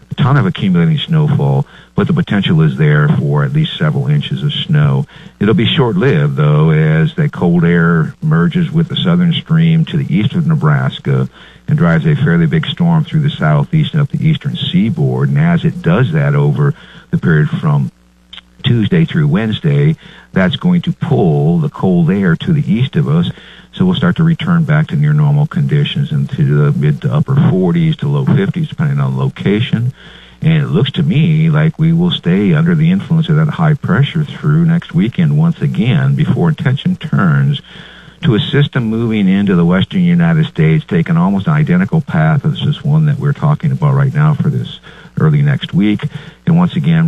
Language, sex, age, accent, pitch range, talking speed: English, male, 50-69, American, 150-170 Hz, 190 wpm